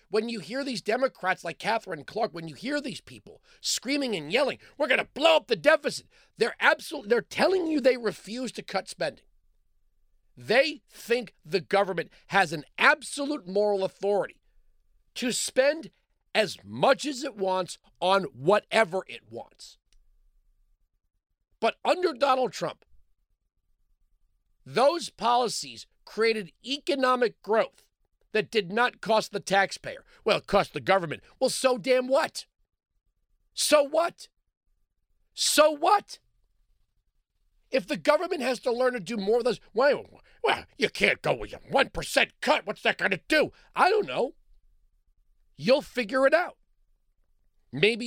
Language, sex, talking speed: English, male, 140 wpm